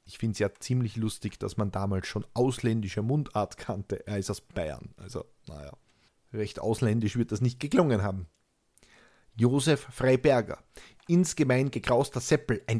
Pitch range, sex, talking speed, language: 115-145 Hz, male, 150 wpm, German